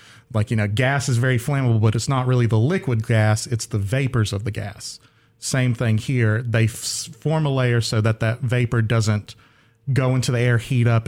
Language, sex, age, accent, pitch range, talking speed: English, male, 40-59, American, 110-125 Hz, 210 wpm